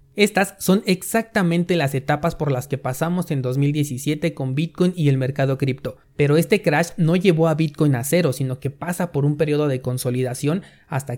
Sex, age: male, 30-49